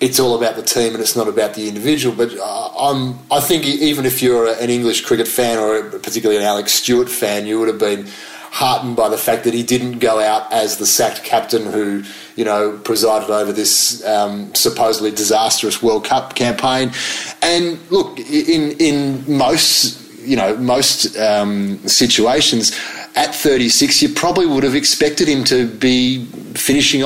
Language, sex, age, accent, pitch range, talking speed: English, male, 30-49, Australian, 110-140 Hz, 170 wpm